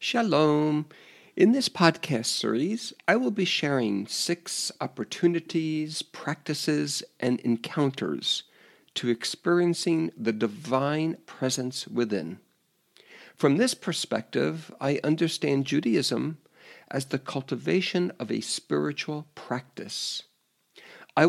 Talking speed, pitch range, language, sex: 95 wpm, 125-170 Hz, English, male